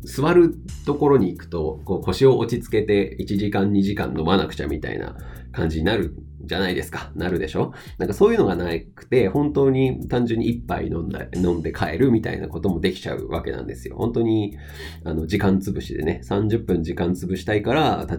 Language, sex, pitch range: Japanese, male, 80-100 Hz